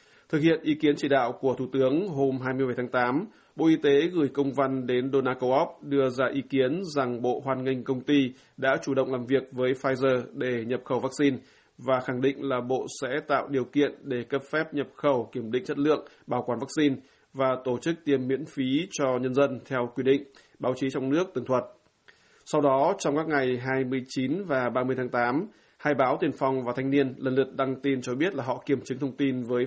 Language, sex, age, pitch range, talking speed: Vietnamese, male, 20-39, 125-140 Hz, 225 wpm